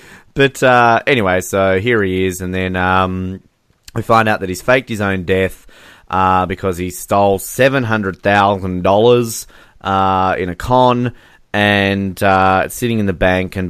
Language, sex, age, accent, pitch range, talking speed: English, male, 20-39, Australian, 95-120 Hz, 155 wpm